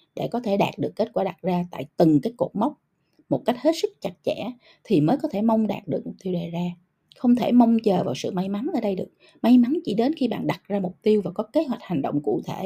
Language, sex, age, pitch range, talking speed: Vietnamese, female, 20-39, 175-240 Hz, 285 wpm